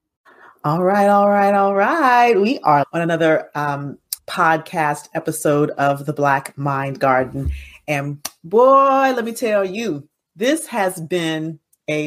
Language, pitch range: English, 150-195 Hz